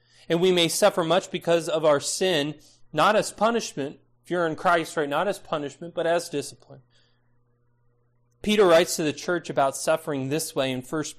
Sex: male